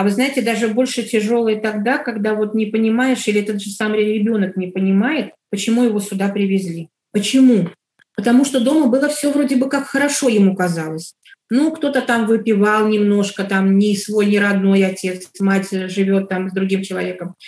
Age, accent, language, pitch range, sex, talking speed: 30-49, native, Russian, 200-260 Hz, female, 175 wpm